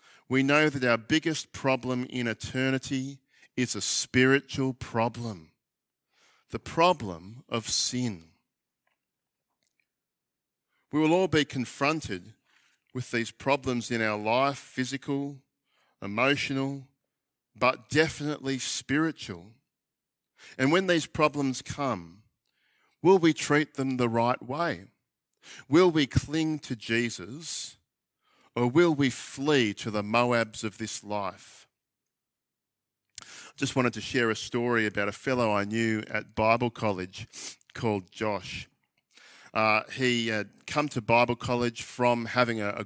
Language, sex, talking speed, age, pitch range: English, male, 120 wpm, 50-69, 110-140 Hz